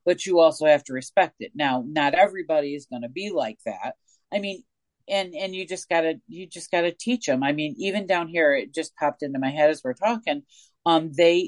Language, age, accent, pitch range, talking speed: English, 40-59, American, 145-180 Hz, 240 wpm